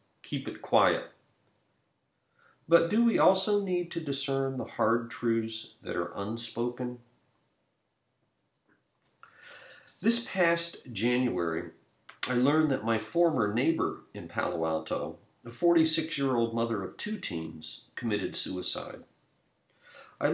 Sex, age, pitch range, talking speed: male, 50-69, 100-160 Hz, 110 wpm